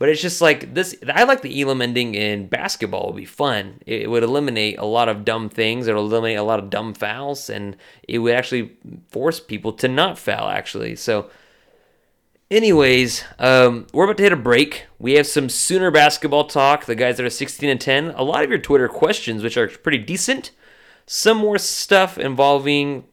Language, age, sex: English, 30-49, male